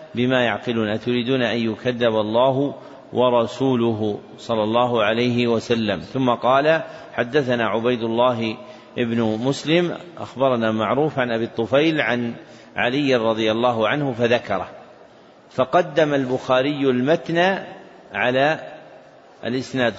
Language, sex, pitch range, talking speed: Arabic, male, 115-140 Hz, 100 wpm